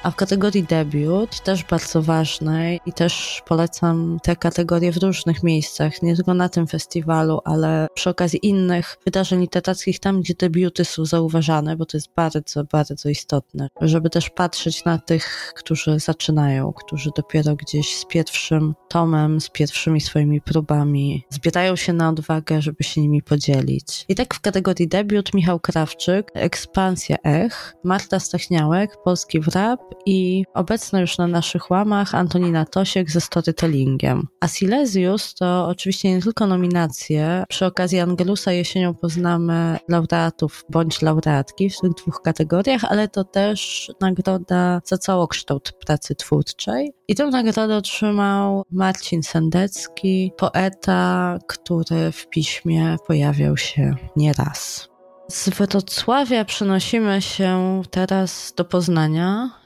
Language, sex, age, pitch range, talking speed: Polish, female, 20-39, 160-190 Hz, 135 wpm